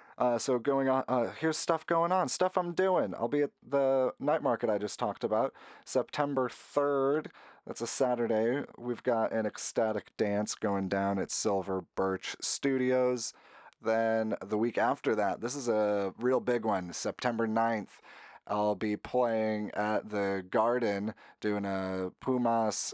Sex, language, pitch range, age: male, English, 100-125 Hz, 30-49